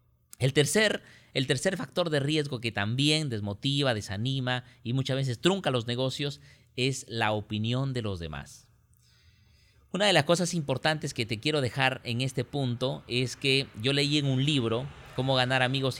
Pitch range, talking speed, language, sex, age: 115-145 Hz, 165 wpm, Spanish, male, 40-59